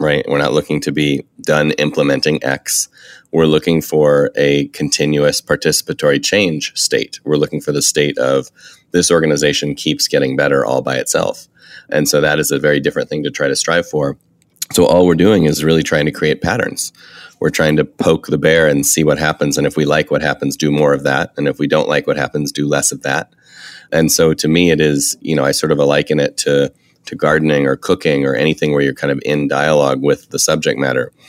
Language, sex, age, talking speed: English, male, 30-49, 220 wpm